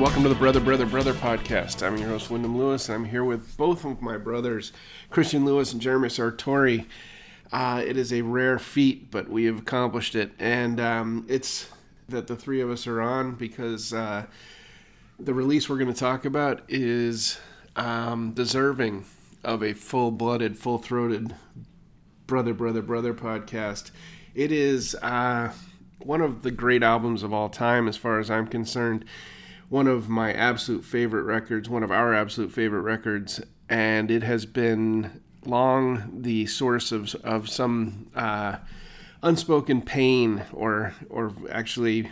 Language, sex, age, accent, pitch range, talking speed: English, male, 30-49, American, 110-130 Hz, 160 wpm